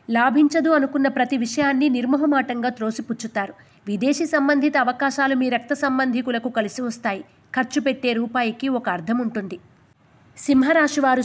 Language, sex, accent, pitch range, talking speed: Telugu, female, native, 230-280 Hz, 110 wpm